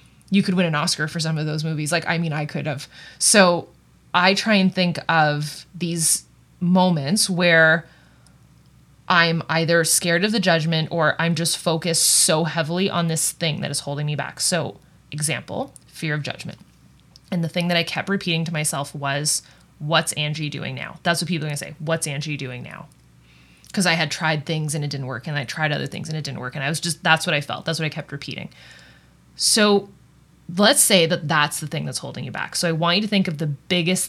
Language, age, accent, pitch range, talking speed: English, 20-39, American, 150-180 Hz, 220 wpm